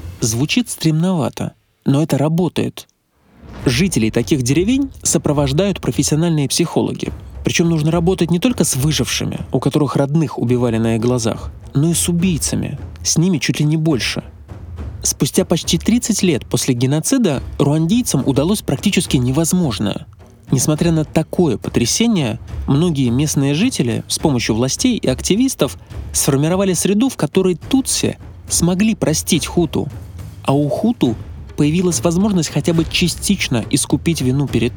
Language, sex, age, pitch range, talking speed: Russian, male, 20-39, 120-175 Hz, 130 wpm